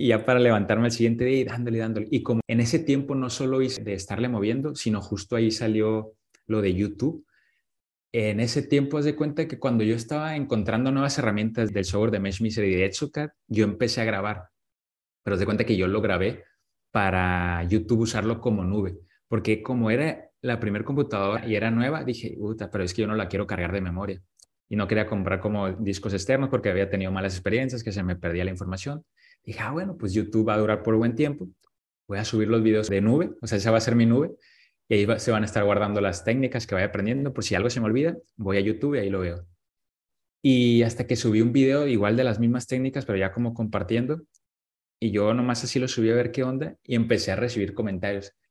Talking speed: 235 wpm